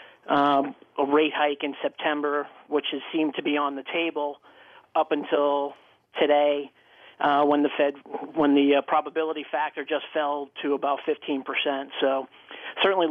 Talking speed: 150 wpm